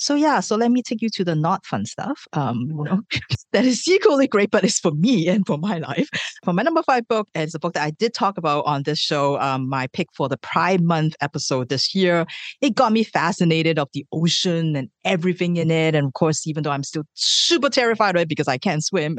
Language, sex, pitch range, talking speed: English, female, 145-210 Hz, 240 wpm